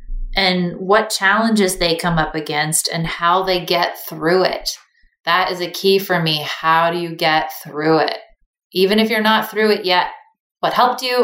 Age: 20-39